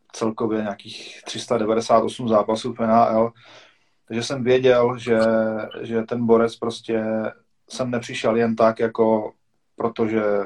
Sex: male